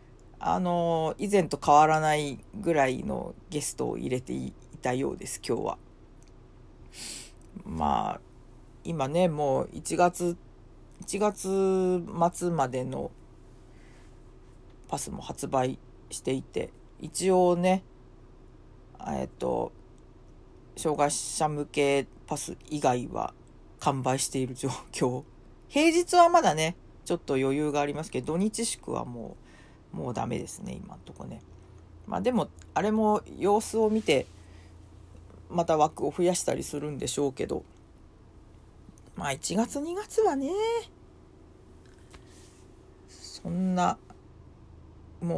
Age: 40-59